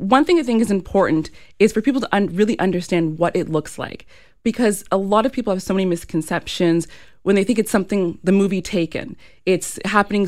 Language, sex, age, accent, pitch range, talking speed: English, female, 20-39, American, 165-200 Hz, 205 wpm